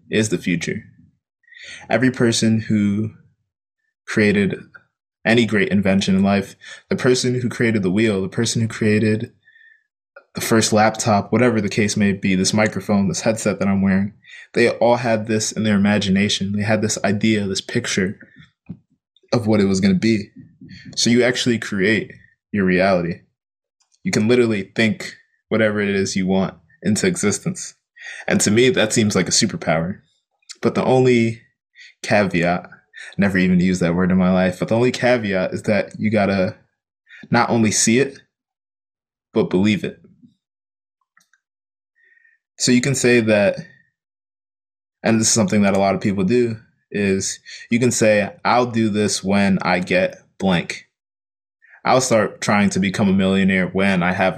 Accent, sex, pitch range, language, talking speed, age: American, male, 100-120 Hz, English, 160 wpm, 20-39